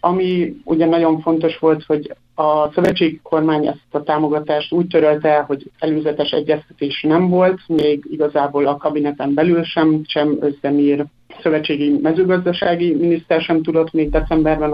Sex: male